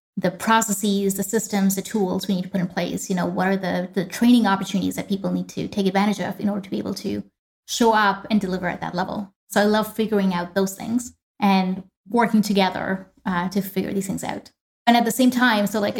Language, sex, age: English, female, 20-39